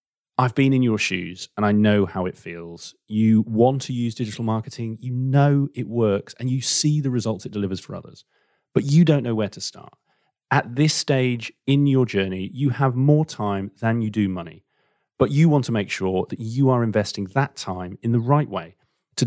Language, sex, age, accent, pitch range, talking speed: English, male, 30-49, British, 100-135 Hz, 210 wpm